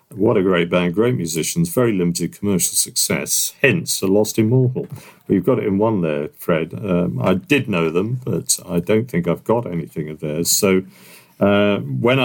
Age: 50-69